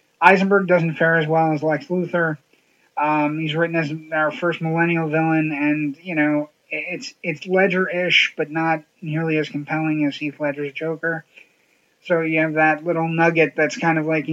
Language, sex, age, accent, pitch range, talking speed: English, male, 30-49, American, 150-170 Hz, 170 wpm